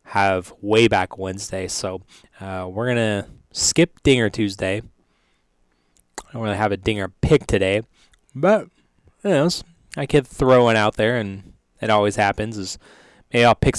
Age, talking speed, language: 20-39, 165 wpm, English